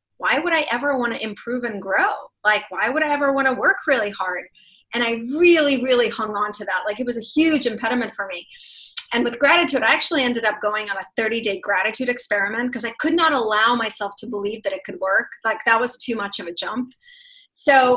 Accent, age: American, 30-49